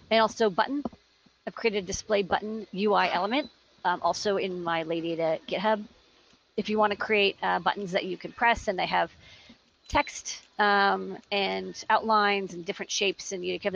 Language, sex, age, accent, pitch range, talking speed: English, female, 40-59, American, 185-215 Hz, 190 wpm